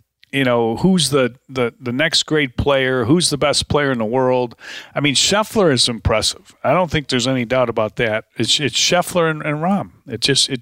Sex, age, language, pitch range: male, 40-59, English, 115-150 Hz